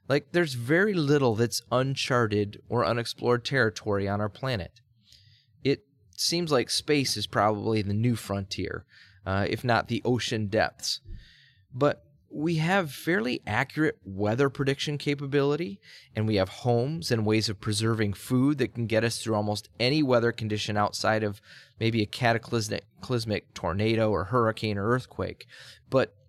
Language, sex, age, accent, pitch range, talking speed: English, male, 20-39, American, 105-140 Hz, 145 wpm